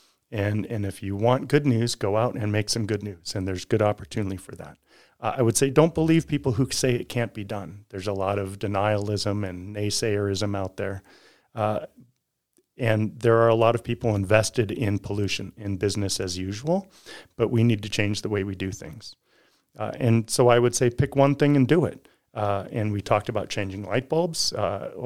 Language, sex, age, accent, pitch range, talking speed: English, male, 40-59, American, 100-120 Hz, 210 wpm